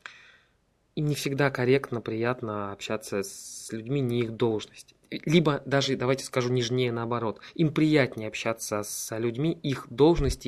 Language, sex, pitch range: Russian, male, 115-135 Hz